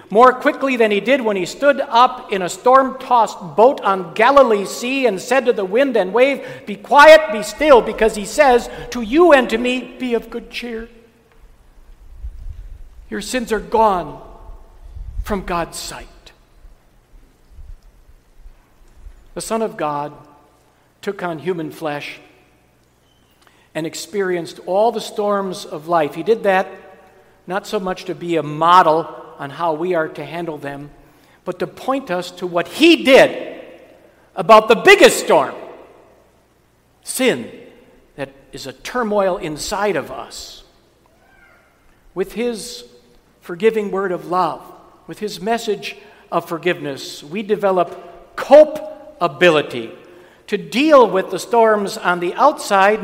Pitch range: 160-235 Hz